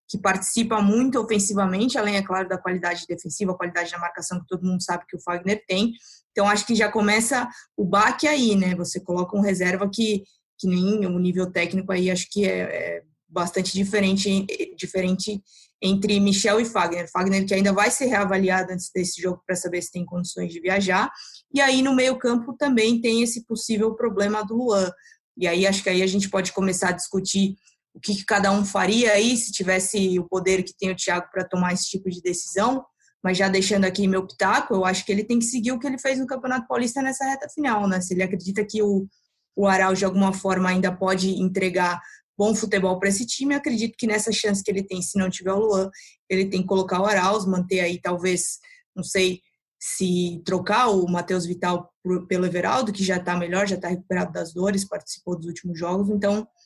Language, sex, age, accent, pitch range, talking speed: Portuguese, female, 20-39, Brazilian, 185-215 Hz, 210 wpm